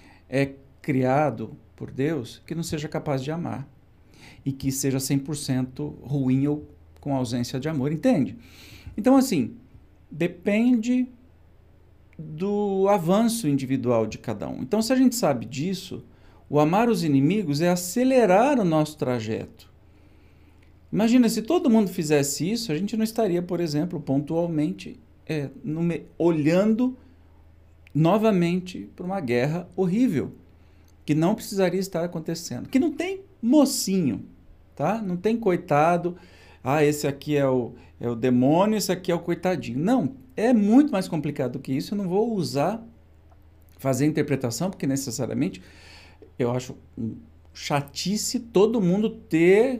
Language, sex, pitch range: Portuguese, male, 125-195 Hz